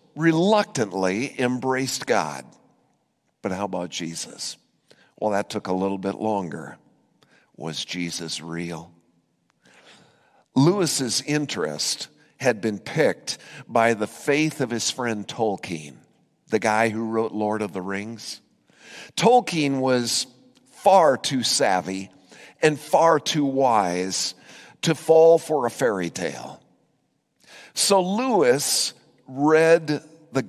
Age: 50-69